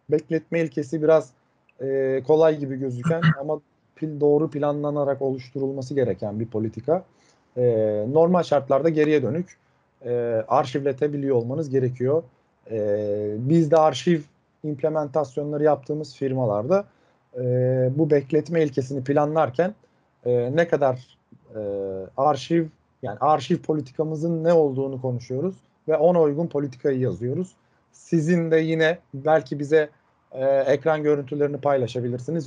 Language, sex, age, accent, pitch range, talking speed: Turkish, male, 40-59, native, 135-165 Hz, 115 wpm